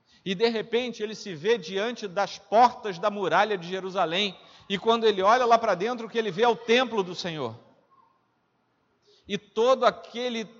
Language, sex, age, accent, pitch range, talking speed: Portuguese, male, 50-69, Brazilian, 190-235 Hz, 180 wpm